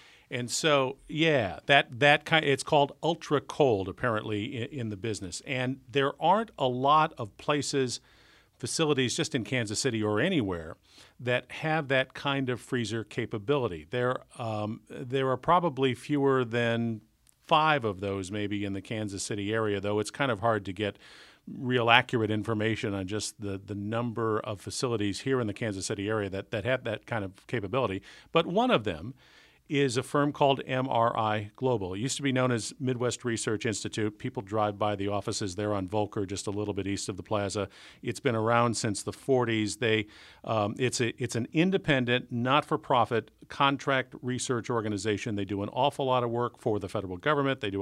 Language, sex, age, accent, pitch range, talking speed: English, male, 50-69, American, 105-135 Hz, 185 wpm